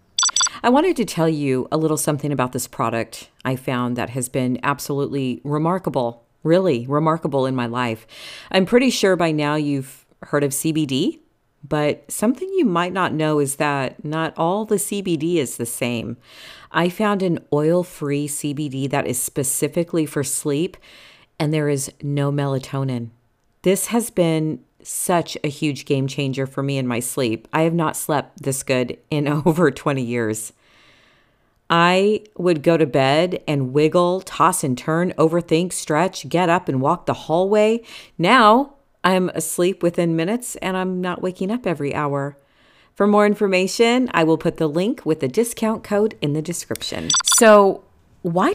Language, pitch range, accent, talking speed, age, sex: English, 140-180 Hz, American, 165 wpm, 40-59, female